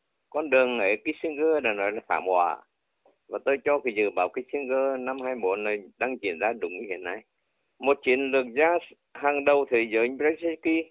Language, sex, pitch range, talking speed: Vietnamese, male, 120-155 Hz, 200 wpm